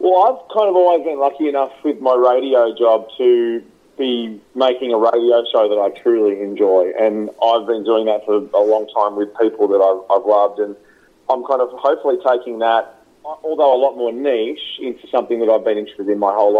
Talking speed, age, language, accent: 210 wpm, 30-49, English, Australian